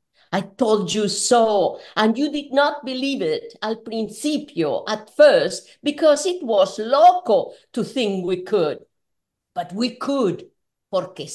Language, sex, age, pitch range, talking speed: English, female, 50-69, 185-240 Hz, 135 wpm